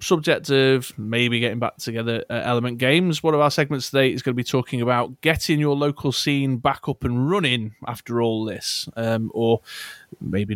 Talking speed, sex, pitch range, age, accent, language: 195 wpm, male, 115-140 Hz, 20-39, British, English